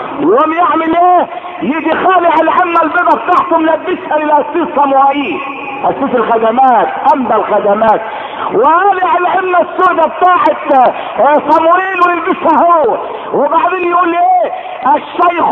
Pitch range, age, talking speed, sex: 245-340 Hz, 50-69, 95 wpm, male